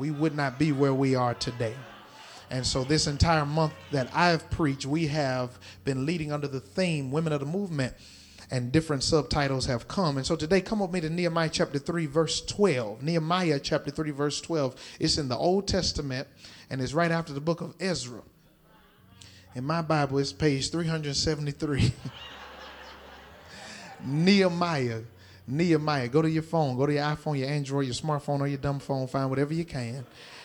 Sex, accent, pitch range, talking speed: male, American, 135-165 Hz, 175 wpm